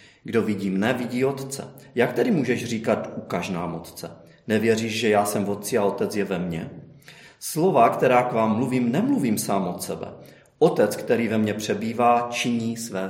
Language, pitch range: Czech, 95-120 Hz